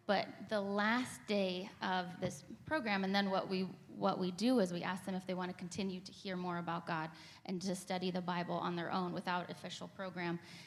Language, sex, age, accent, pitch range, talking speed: English, female, 10-29, American, 175-200 Hz, 220 wpm